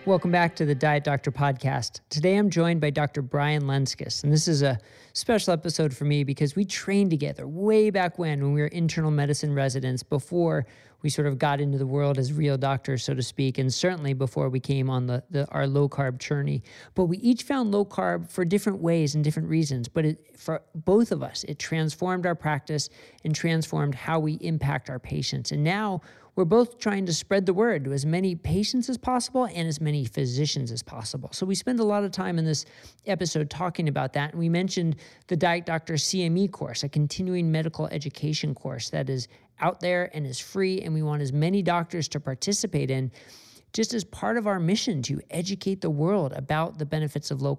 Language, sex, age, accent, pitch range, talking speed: English, male, 40-59, American, 140-180 Hz, 210 wpm